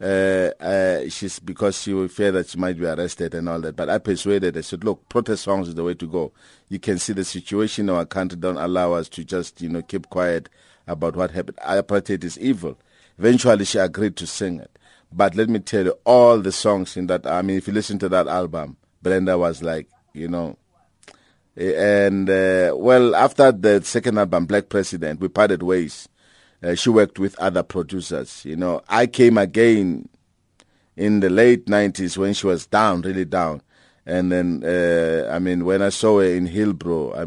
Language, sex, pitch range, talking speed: English, male, 90-100 Hz, 205 wpm